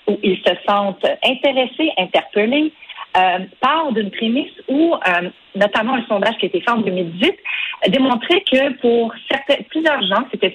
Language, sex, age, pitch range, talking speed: French, female, 40-59, 210-280 Hz, 160 wpm